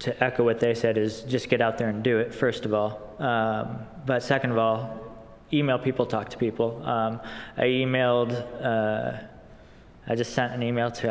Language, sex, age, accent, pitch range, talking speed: English, male, 20-39, American, 115-125 Hz, 195 wpm